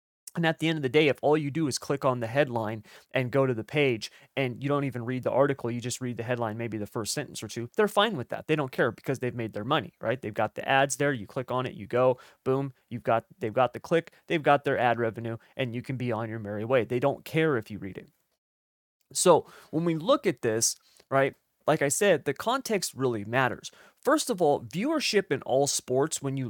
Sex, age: male, 30-49